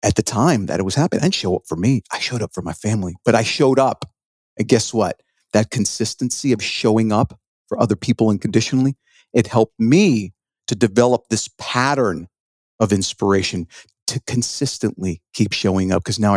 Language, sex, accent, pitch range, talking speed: English, male, American, 105-135 Hz, 185 wpm